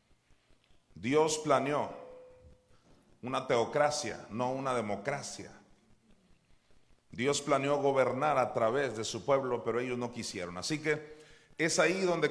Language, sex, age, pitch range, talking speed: Spanish, male, 40-59, 110-170 Hz, 115 wpm